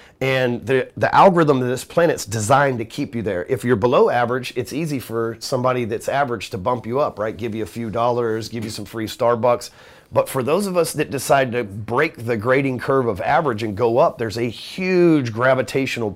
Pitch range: 115-140 Hz